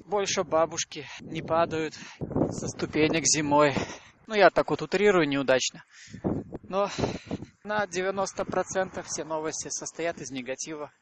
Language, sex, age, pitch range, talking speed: Russian, male, 20-39, 145-180 Hz, 115 wpm